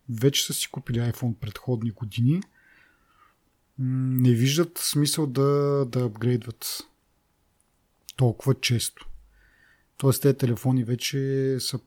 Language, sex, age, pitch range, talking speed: Bulgarian, male, 30-49, 125-150 Hz, 100 wpm